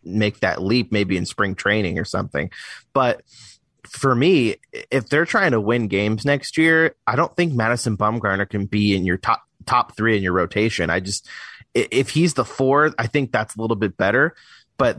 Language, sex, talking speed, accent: English, male, 195 wpm, American